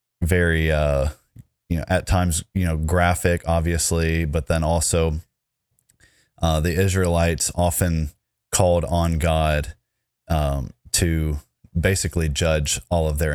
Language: English